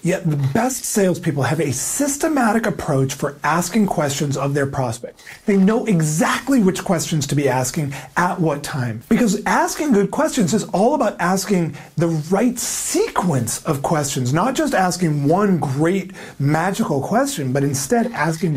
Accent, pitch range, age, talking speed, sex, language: American, 140-195 Hz, 40-59, 155 wpm, male, English